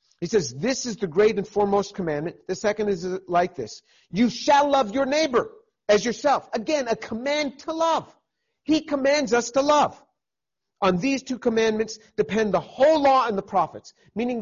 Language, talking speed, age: English, 180 wpm, 50-69